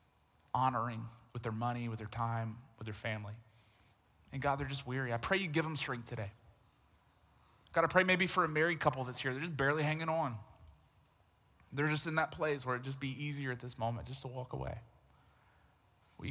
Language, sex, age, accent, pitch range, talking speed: English, male, 20-39, American, 115-155 Hz, 200 wpm